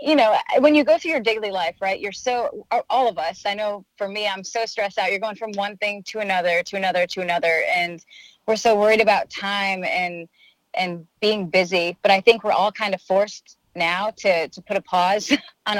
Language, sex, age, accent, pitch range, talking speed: English, female, 20-39, American, 185-220 Hz, 225 wpm